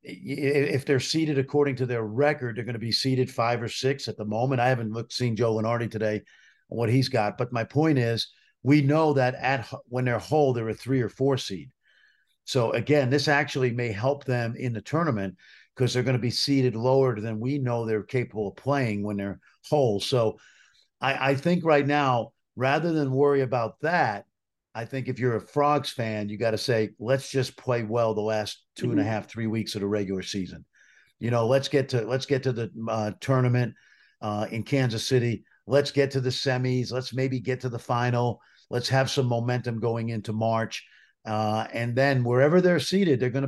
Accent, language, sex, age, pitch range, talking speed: American, English, male, 50-69, 115-135 Hz, 205 wpm